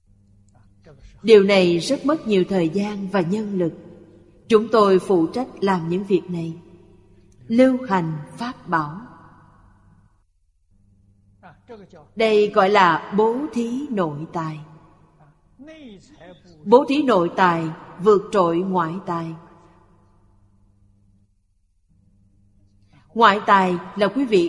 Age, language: 30-49, Vietnamese